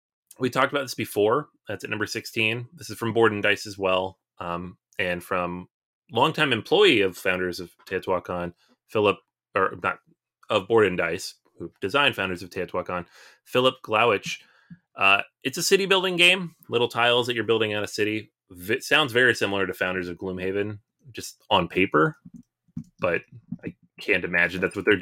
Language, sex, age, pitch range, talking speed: English, male, 30-49, 95-130 Hz, 175 wpm